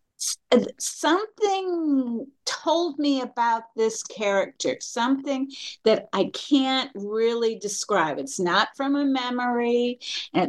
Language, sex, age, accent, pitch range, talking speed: English, female, 50-69, American, 200-255 Hz, 105 wpm